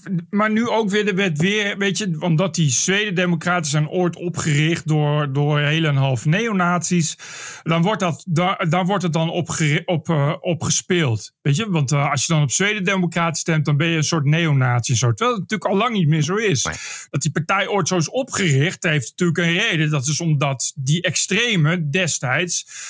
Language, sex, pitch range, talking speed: Dutch, male, 155-205 Hz, 195 wpm